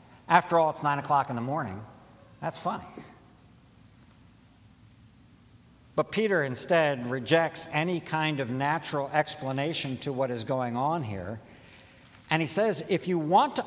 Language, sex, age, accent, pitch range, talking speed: English, male, 60-79, American, 125-175 Hz, 140 wpm